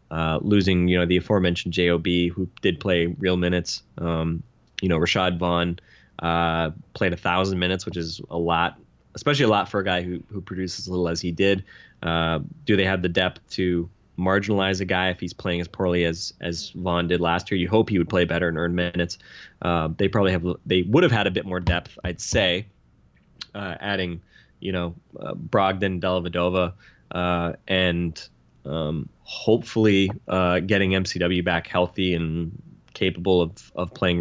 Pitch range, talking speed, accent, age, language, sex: 85-100 Hz, 180 wpm, American, 20-39, English, male